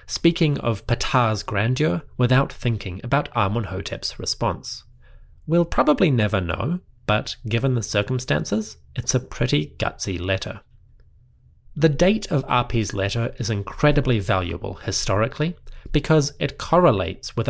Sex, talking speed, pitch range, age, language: male, 120 wpm, 100-140 Hz, 30-49, English